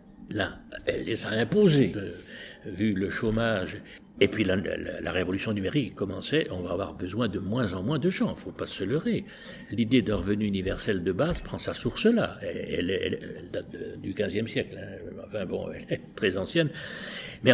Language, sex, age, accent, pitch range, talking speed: French, male, 60-79, French, 115-190 Hz, 200 wpm